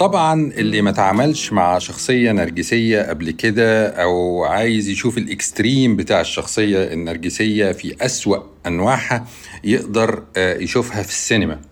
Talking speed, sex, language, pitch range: 120 wpm, male, Arabic, 90-120 Hz